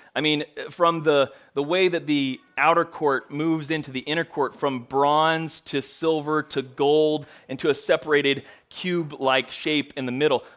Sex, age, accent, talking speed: male, 30-49, American, 170 wpm